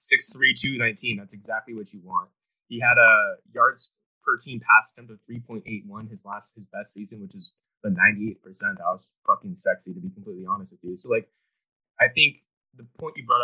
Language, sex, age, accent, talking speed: English, male, 20-39, American, 230 wpm